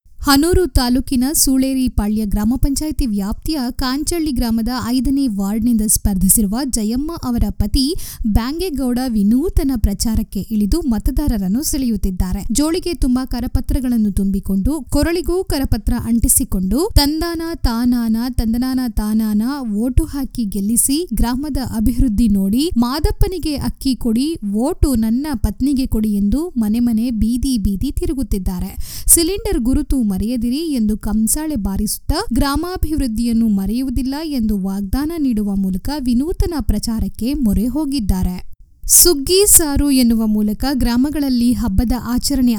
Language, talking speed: Kannada, 105 wpm